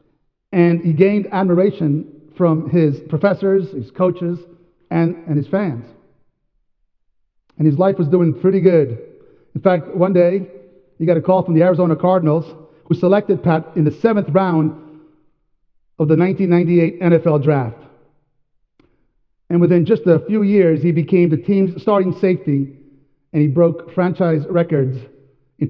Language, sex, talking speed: English, male, 145 wpm